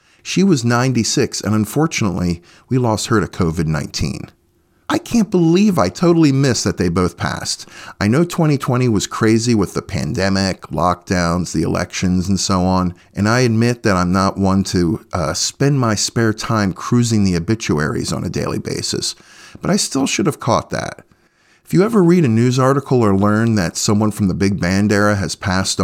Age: 40-59